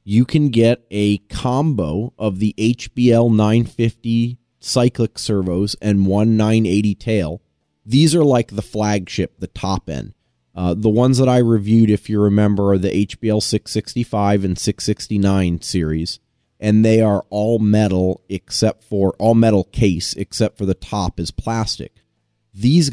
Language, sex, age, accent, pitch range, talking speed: English, male, 30-49, American, 95-120 Hz, 145 wpm